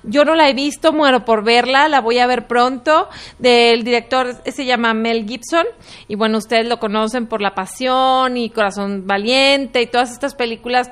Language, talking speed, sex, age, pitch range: English, 185 wpm, female, 30-49, 240-285 Hz